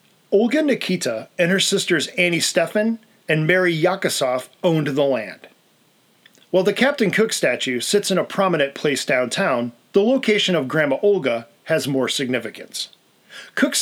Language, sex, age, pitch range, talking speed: English, male, 40-59, 140-200 Hz, 145 wpm